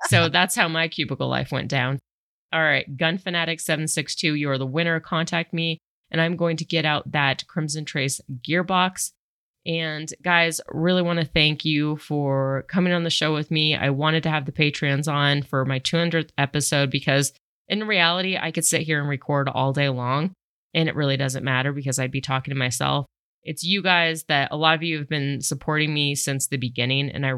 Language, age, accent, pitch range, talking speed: English, 30-49, American, 135-160 Hz, 200 wpm